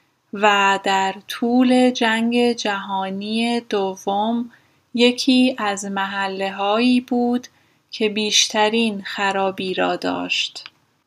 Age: 10-29